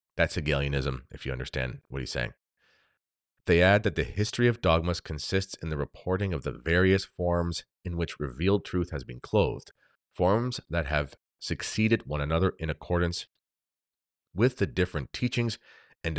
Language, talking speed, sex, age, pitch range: English, 160 wpm, male, 30-49, 75-100 Hz